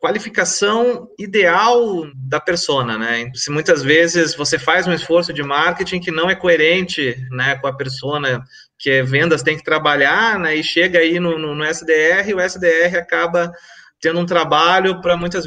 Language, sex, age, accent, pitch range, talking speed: Portuguese, male, 30-49, Brazilian, 140-185 Hz, 175 wpm